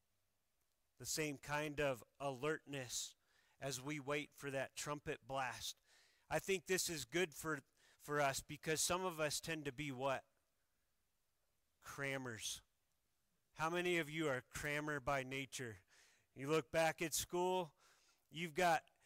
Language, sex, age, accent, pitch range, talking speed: English, male, 40-59, American, 135-165 Hz, 140 wpm